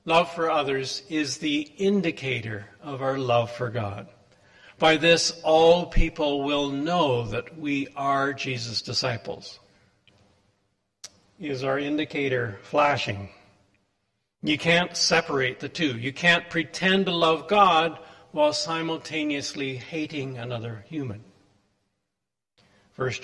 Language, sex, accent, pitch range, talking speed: English, male, American, 100-165 Hz, 110 wpm